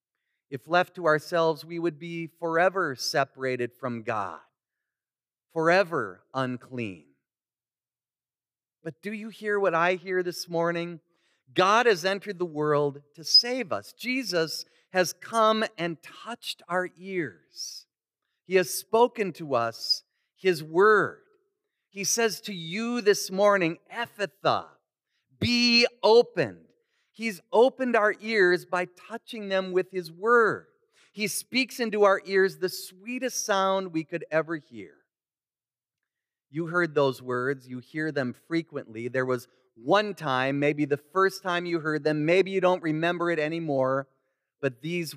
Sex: male